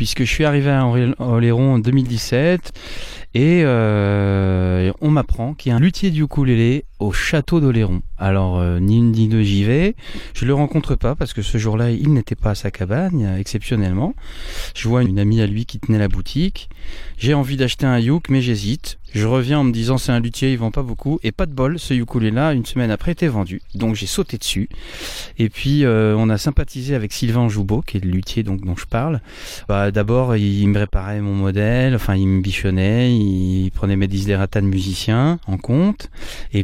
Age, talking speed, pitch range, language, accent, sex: 30-49, 210 wpm, 100-135 Hz, French, French, male